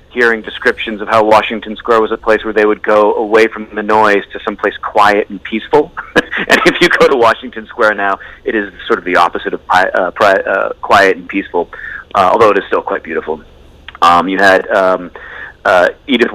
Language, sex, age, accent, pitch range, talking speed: English, male, 40-59, American, 105-120 Hz, 200 wpm